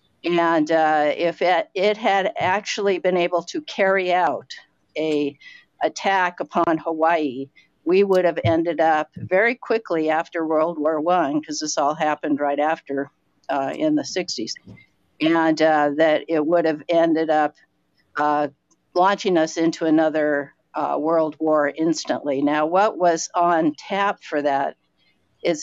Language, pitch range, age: English, 150-175 Hz, 50-69